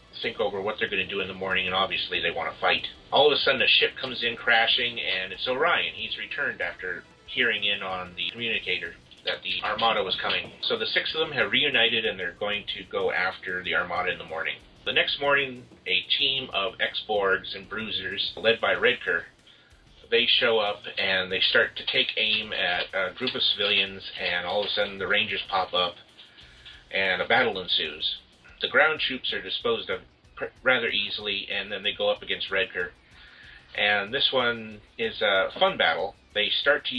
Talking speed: 200 wpm